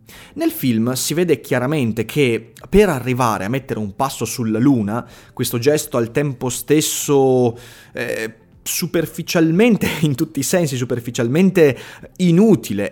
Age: 30-49